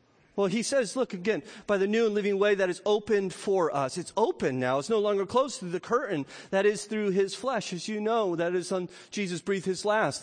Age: 40-59